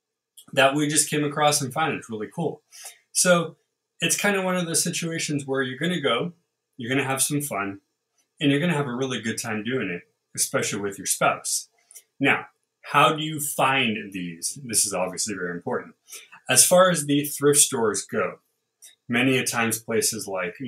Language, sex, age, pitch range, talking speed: English, male, 20-39, 100-145 Hz, 185 wpm